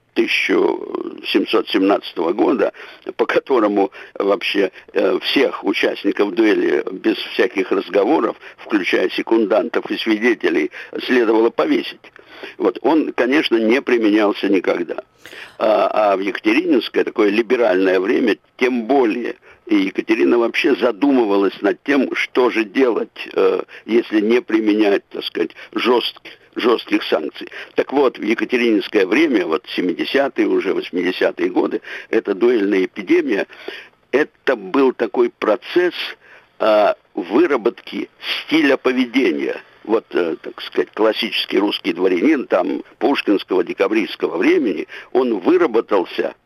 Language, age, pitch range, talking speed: Russian, 60-79, 330-395 Hz, 105 wpm